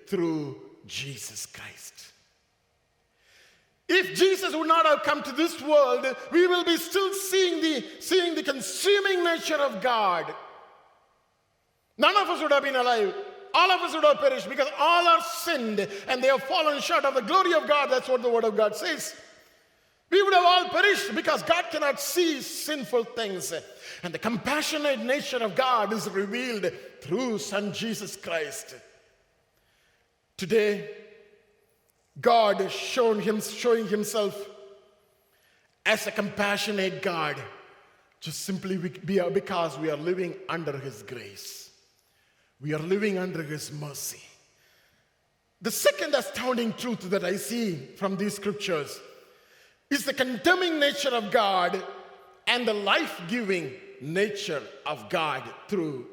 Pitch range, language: 200-310 Hz, English